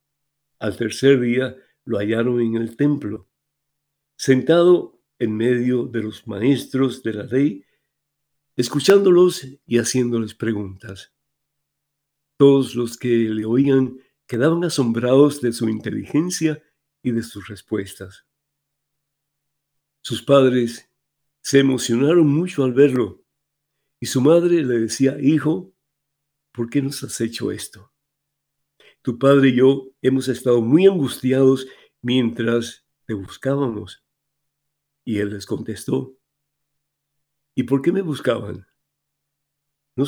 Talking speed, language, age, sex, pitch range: 110 wpm, Spanish, 60-79, male, 120-145 Hz